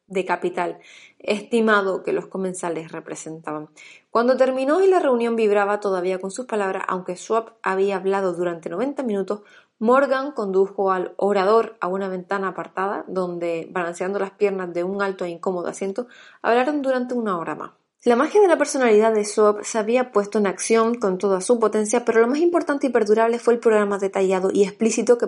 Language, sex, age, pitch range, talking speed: Spanish, female, 20-39, 190-235 Hz, 180 wpm